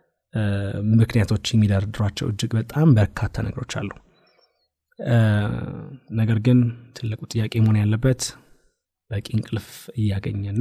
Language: Amharic